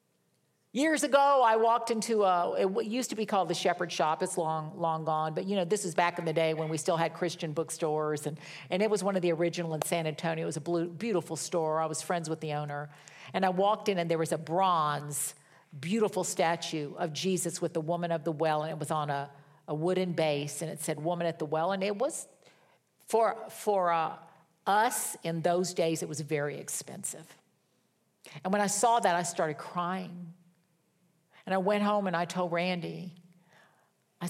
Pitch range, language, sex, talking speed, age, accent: 165-215 Hz, English, female, 210 wpm, 50-69, American